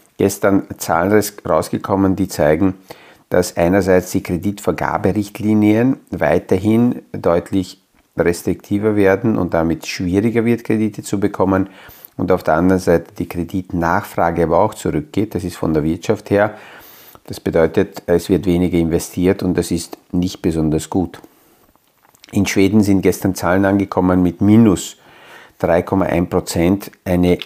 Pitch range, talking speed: 90-105 Hz, 130 wpm